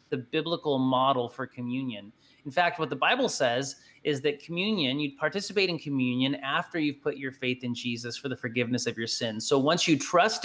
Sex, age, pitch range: male, 30-49, 130-170 Hz